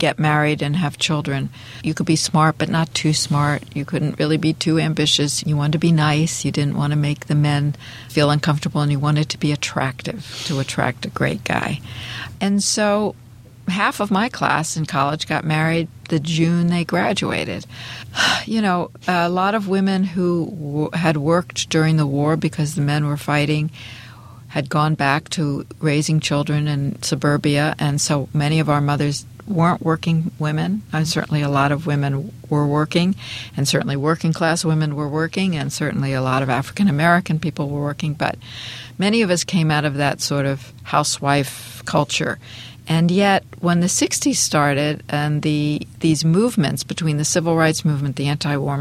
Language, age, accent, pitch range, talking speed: English, 60-79, American, 145-165 Hz, 180 wpm